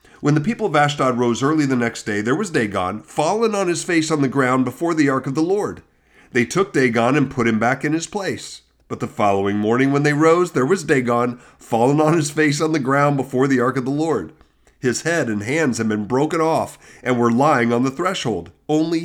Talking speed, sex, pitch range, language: 235 wpm, male, 115-150 Hz, English